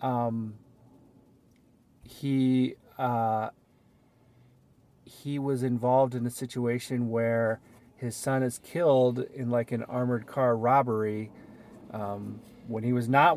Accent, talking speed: American, 110 wpm